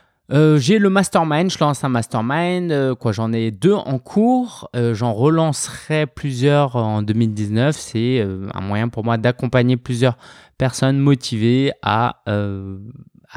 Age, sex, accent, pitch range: 20-39, male, French, 115-150 Hz